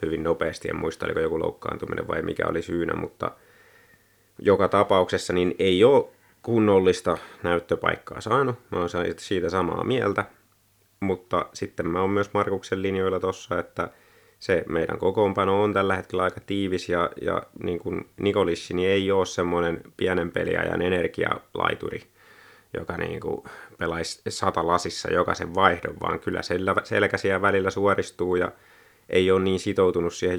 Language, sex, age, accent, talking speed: Finnish, male, 30-49, native, 140 wpm